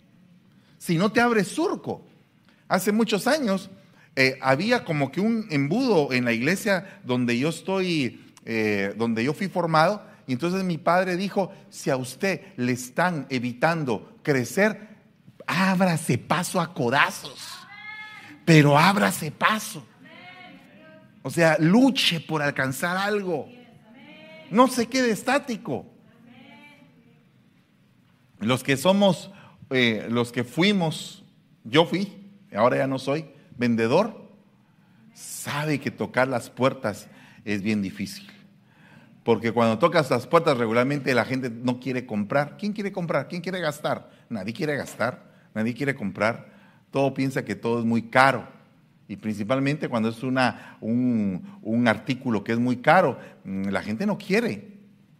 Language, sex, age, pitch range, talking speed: Spanish, male, 40-59, 125-195 Hz, 130 wpm